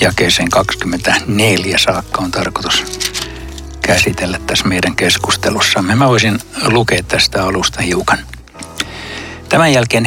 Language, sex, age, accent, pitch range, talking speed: Finnish, male, 60-79, native, 95-120 Hz, 100 wpm